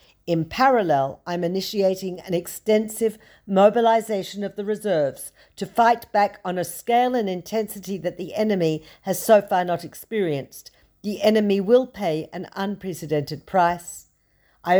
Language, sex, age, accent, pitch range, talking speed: Hebrew, female, 50-69, Australian, 170-205 Hz, 140 wpm